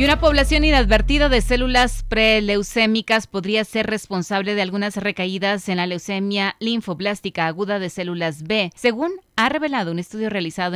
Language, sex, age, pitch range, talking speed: Spanish, female, 20-39, 170-205 Hz, 150 wpm